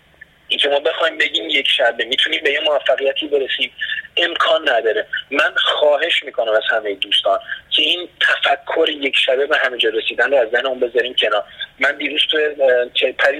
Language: Persian